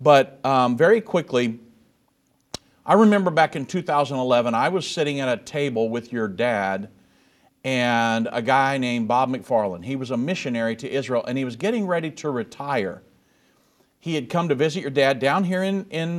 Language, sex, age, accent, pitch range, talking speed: English, male, 50-69, American, 125-160 Hz, 180 wpm